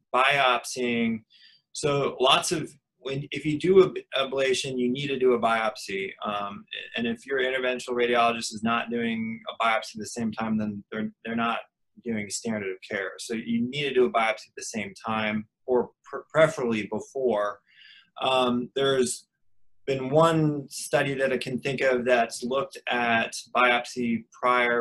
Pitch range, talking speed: 110-130 Hz, 160 wpm